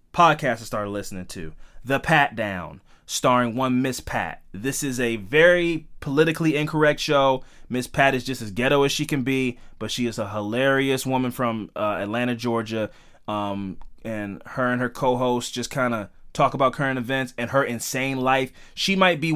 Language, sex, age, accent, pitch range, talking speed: English, male, 20-39, American, 100-130 Hz, 185 wpm